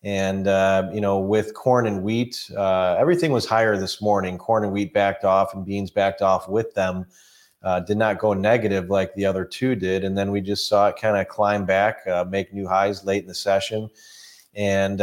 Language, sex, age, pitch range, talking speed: English, male, 30-49, 95-110 Hz, 215 wpm